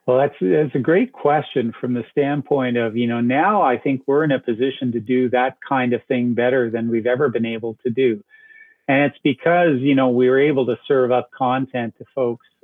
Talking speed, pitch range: 225 wpm, 120-155 Hz